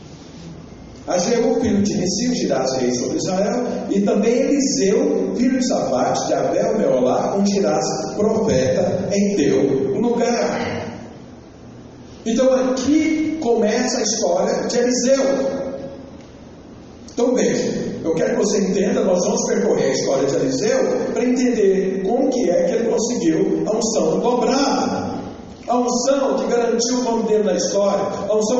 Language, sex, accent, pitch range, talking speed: Portuguese, male, Brazilian, 230-265 Hz, 145 wpm